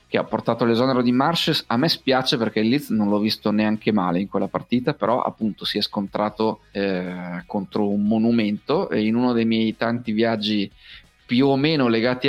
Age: 30-49